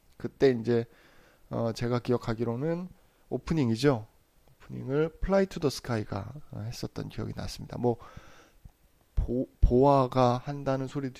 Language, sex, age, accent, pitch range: Korean, male, 20-39, native, 115-145 Hz